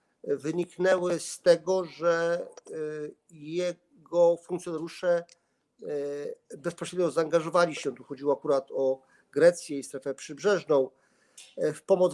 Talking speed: 95 wpm